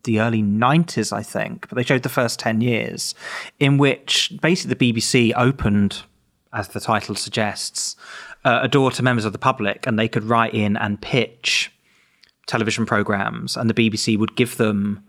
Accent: British